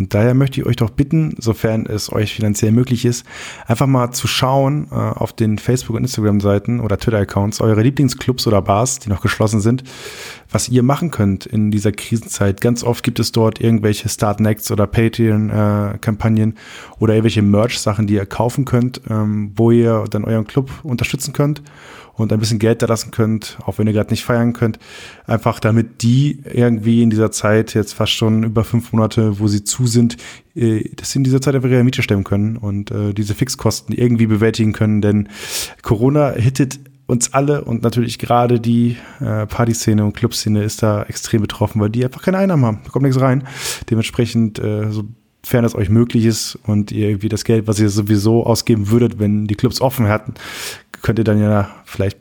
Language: German